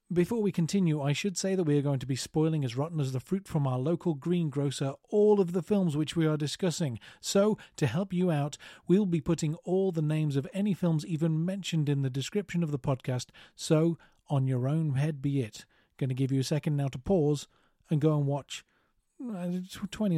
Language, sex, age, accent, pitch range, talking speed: English, male, 30-49, British, 140-175 Hz, 215 wpm